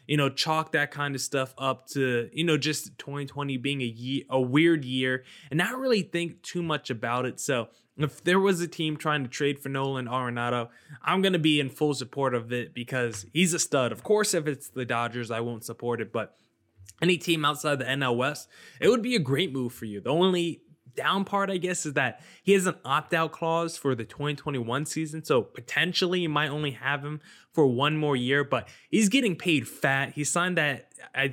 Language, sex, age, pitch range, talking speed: English, male, 20-39, 130-160 Hz, 215 wpm